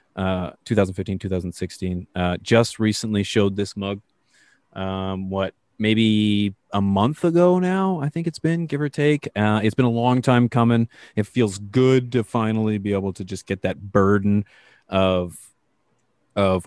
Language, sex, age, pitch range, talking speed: English, male, 30-49, 95-115 Hz, 160 wpm